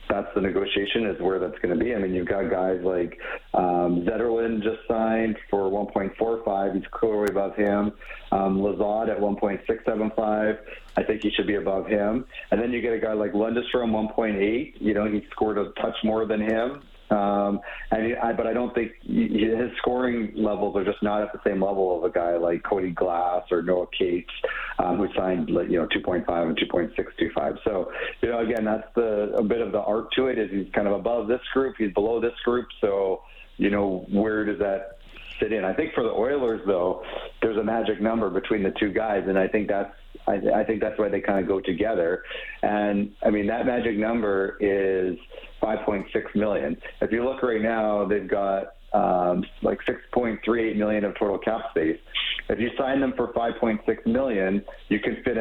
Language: English